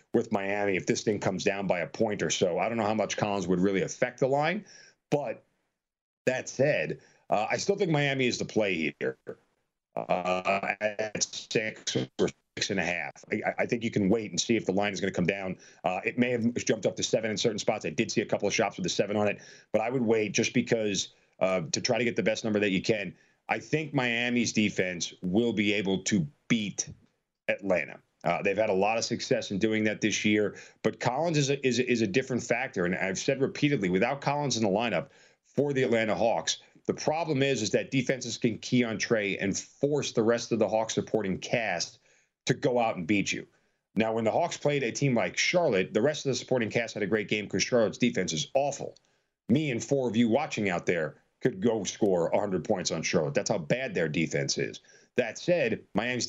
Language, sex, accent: English, male, American